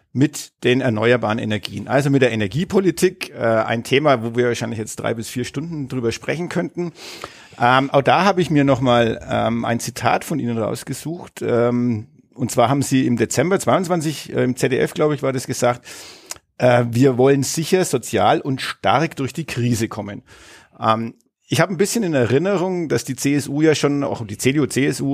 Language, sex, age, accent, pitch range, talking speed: German, male, 50-69, German, 115-140 Hz, 185 wpm